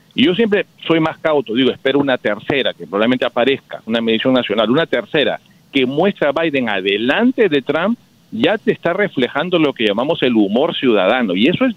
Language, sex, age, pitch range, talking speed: Spanish, male, 50-69, 135-200 Hz, 195 wpm